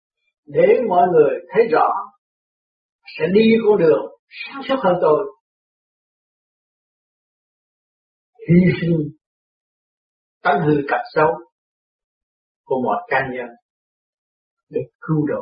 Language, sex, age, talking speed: Vietnamese, male, 60-79, 100 wpm